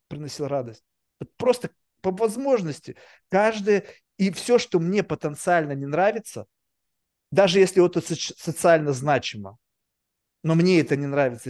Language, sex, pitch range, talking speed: Russian, male, 145-185 Hz, 125 wpm